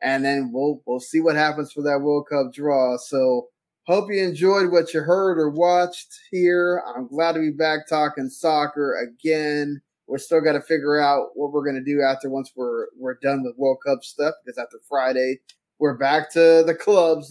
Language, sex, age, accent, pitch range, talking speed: English, male, 20-39, American, 135-165 Hz, 200 wpm